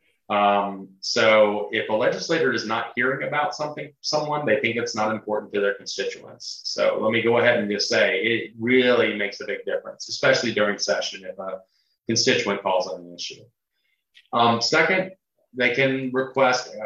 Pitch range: 105-130 Hz